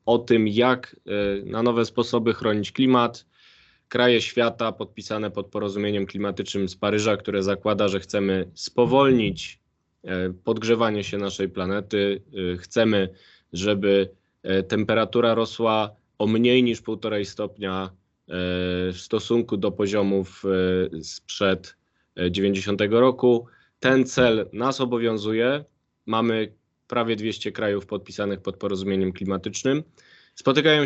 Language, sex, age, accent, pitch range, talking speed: Polish, male, 20-39, native, 100-125 Hz, 105 wpm